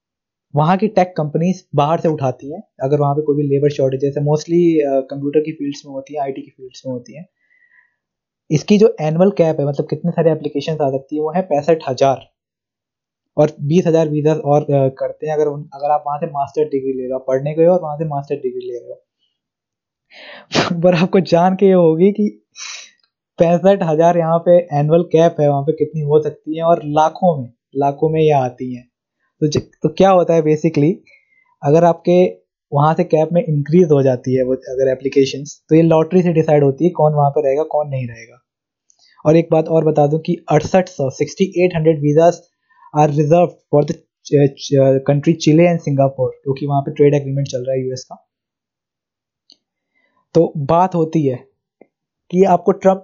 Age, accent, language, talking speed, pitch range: 20-39, native, Hindi, 190 wpm, 140-170 Hz